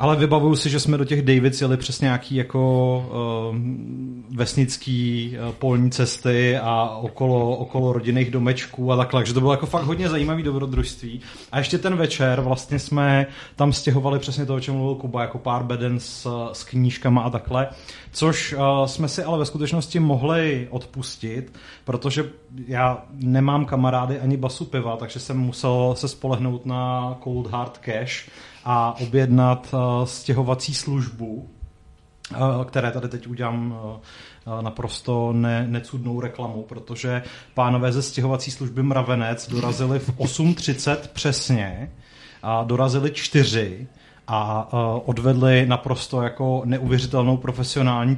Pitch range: 120-135 Hz